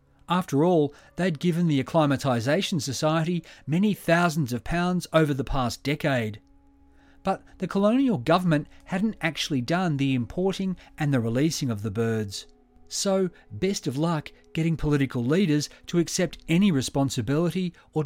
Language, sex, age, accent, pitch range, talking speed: English, male, 40-59, Australian, 130-170 Hz, 140 wpm